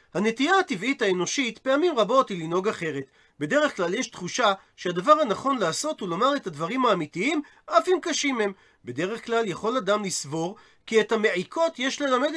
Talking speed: 165 wpm